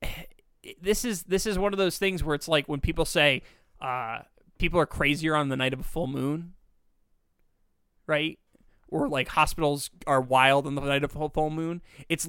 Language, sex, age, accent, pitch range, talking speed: English, male, 20-39, American, 135-165 Hz, 190 wpm